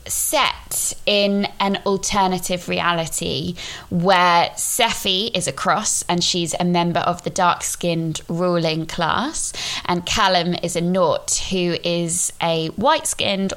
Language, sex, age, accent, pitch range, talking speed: English, female, 20-39, British, 165-185 Hz, 125 wpm